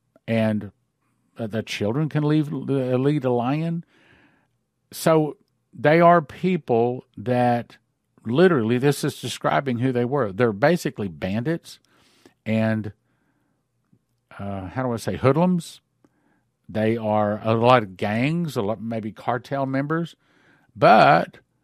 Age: 50-69